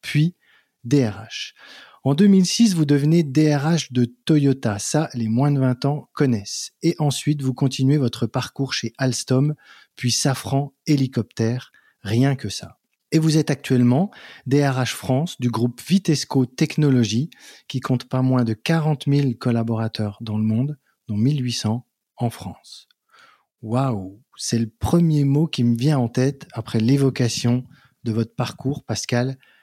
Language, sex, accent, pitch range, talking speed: French, male, French, 115-150 Hz, 145 wpm